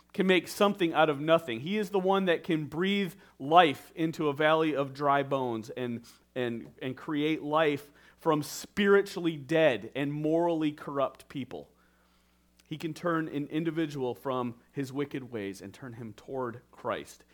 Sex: male